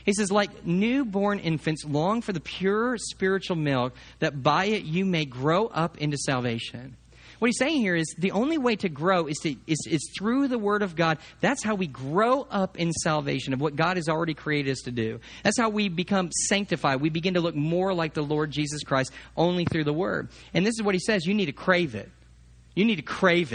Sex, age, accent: male, 40-59, American